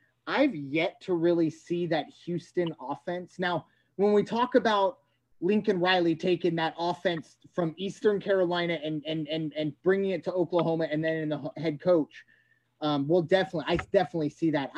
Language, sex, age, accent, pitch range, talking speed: English, male, 30-49, American, 160-210 Hz, 170 wpm